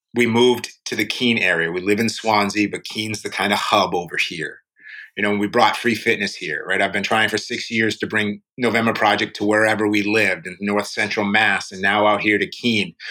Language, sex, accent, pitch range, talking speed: English, male, American, 105-125 Hz, 230 wpm